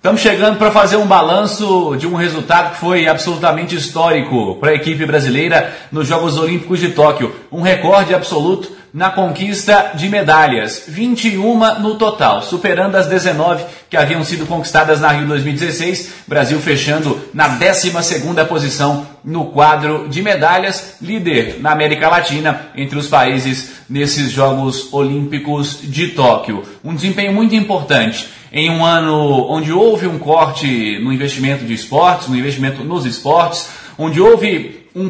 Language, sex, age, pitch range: Portuguese, male, 30-49, 140-185 Hz